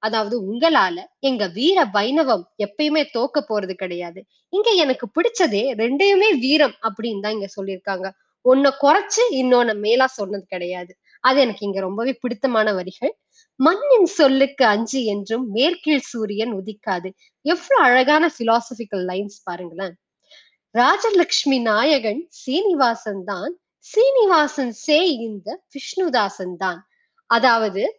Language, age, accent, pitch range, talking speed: Tamil, 20-39, native, 210-320 Hz, 110 wpm